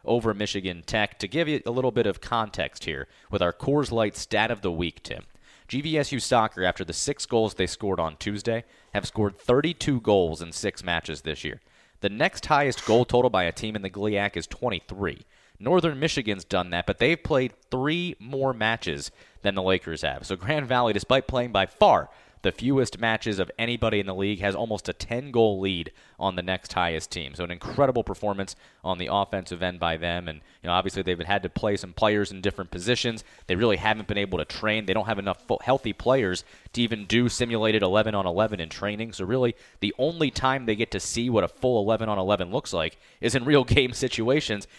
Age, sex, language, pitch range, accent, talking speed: 30-49, male, English, 95-120 Hz, American, 210 wpm